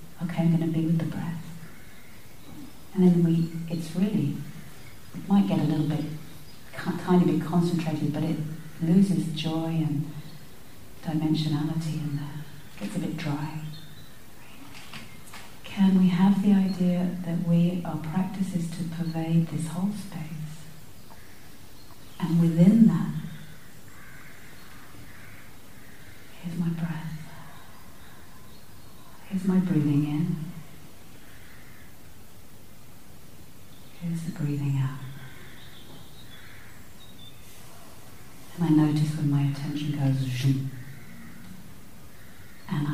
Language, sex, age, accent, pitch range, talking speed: English, female, 40-59, British, 145-170 Hz, 100 wpm